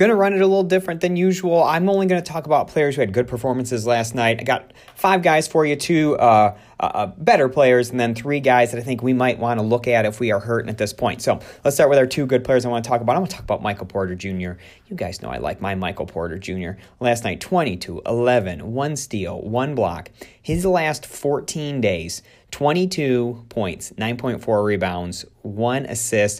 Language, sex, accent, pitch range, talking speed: English, male, American, 105-150 Hz, 230 wpm